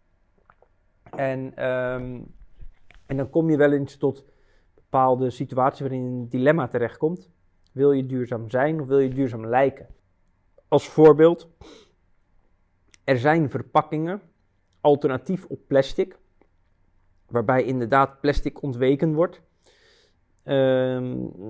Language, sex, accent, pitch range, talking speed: Dutch, male, Dutch, 115-145 Hz, 105 wpm